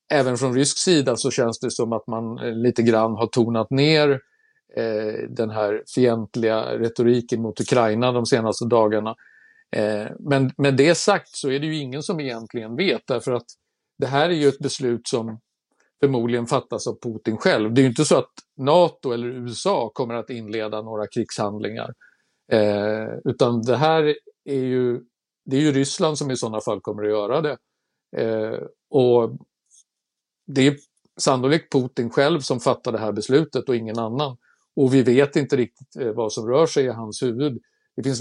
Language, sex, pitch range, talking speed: Swedish, male, 115-140 Hz, 175 wpm